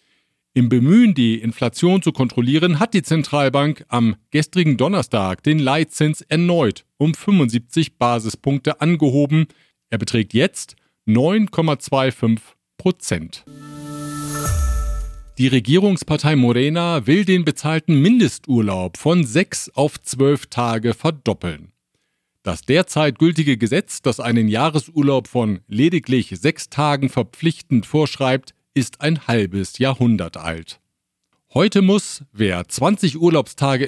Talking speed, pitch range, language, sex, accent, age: 105 wpm, 120-165 Hz, German, male, German, 50-69